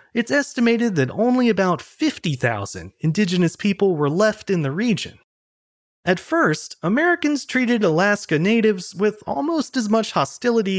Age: 30-49